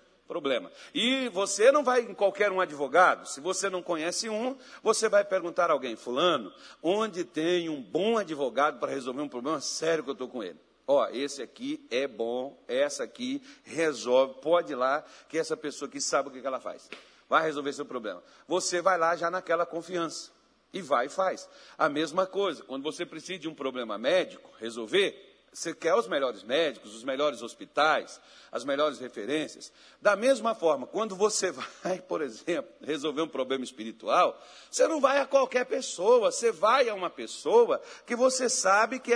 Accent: Brazilian